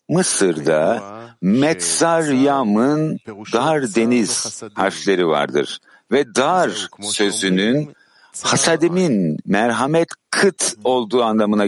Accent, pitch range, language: native, 100-145 Hz, Turkish